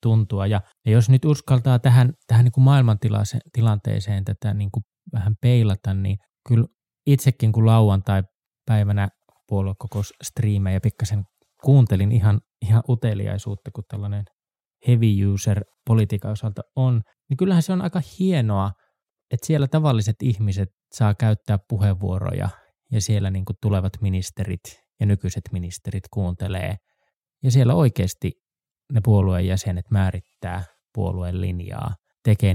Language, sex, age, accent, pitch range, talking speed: Finnish, male, 20-39, native, 100-120 Hz, 125 wpm